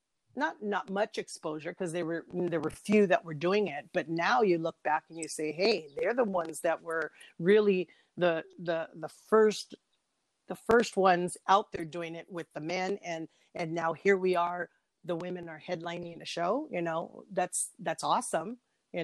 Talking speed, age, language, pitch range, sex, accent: 190 wpm, 40-59, English, 165-185 Hz, female, American